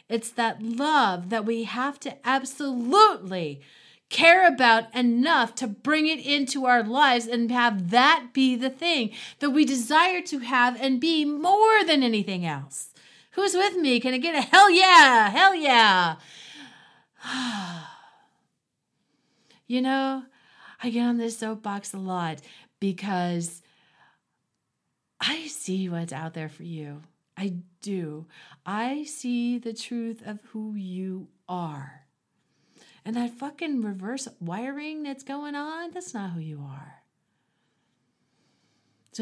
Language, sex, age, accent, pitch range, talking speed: English, female, 40-59, American, 170-265 Hz, 130 wpm